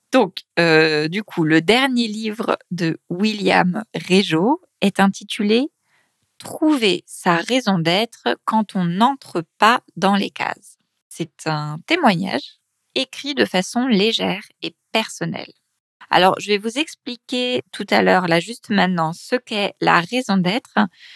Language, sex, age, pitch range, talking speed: French, female, 20-39, 175-220 Hz, 135 wpm